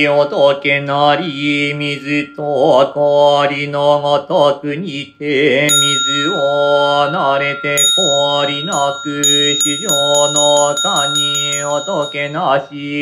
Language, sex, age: Japanese, male, 30-49